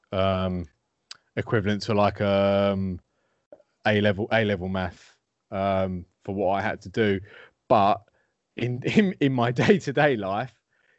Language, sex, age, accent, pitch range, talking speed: English, male, 30-49, British, 95-110 Hz, 130 wpm